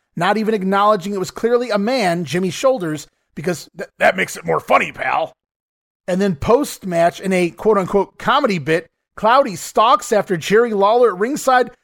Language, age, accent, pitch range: English, 30-49, American, 170-235 Hz